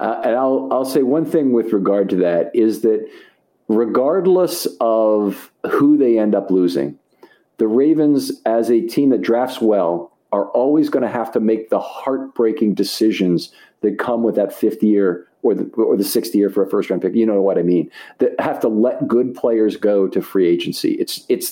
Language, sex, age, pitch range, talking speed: English, male, 50-69, 105-145 Hz, 200 wpm